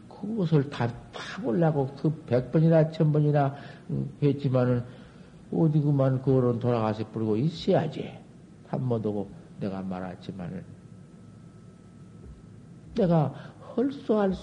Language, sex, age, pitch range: Korean, male, 50-69, 110-165 Hz